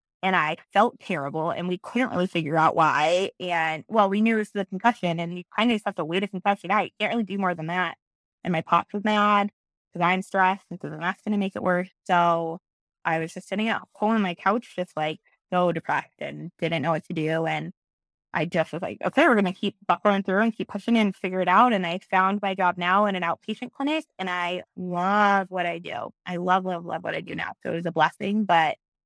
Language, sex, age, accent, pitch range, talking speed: English, female, 20-39, American, 170-200 Hz, 250 wpm